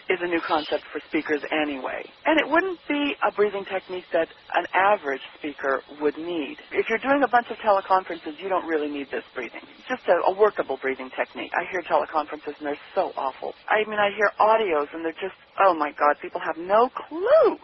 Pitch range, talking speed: 155-230 Hz, 210 wpm